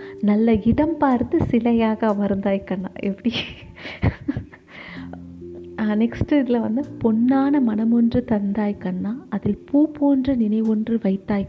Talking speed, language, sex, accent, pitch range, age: 100 wpm, Tamil, female, native, 205-250 Hz, 30-49